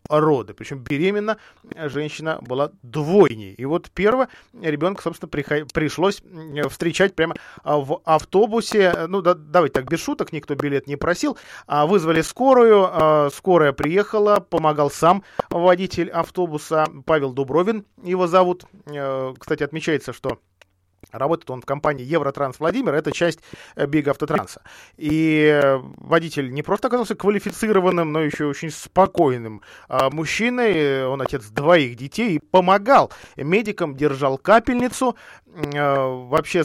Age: 20-39